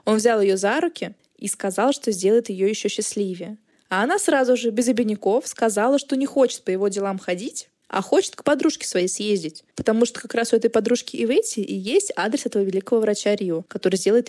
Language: Russian